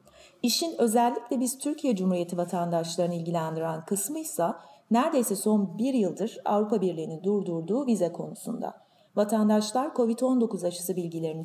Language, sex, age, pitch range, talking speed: Turkish, female, 30-49, 175-230 Hz, 115 wpm